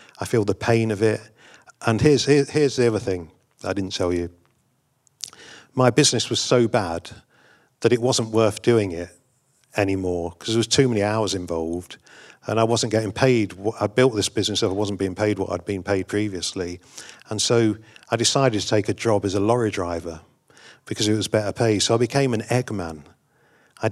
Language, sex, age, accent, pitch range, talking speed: English, male, 50-69, British, 95-120 Hz, 200 wpm